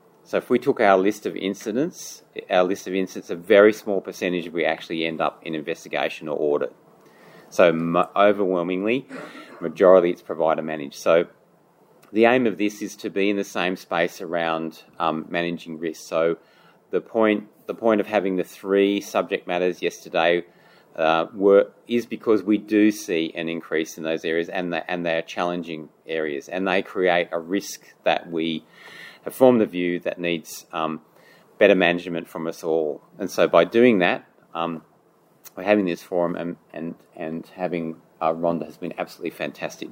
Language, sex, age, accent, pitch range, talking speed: English, male, 30-49, Australian, 85-100 Hz, 170 wpm